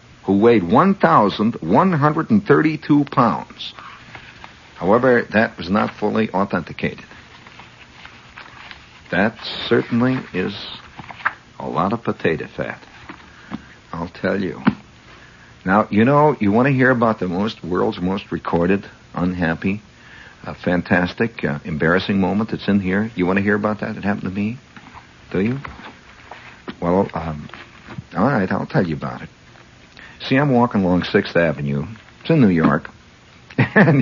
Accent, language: American, English